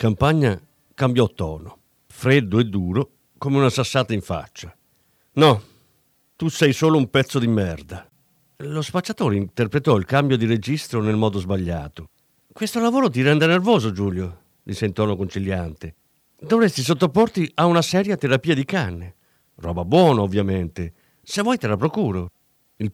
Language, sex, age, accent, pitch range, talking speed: Italian, male, 50-69, native, 105-175 Hz, 145 wpm